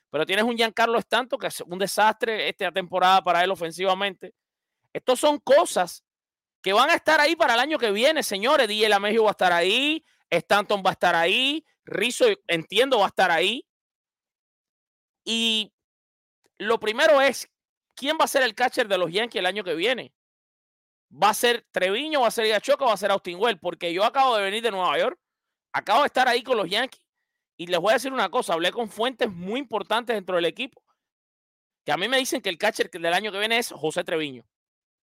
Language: English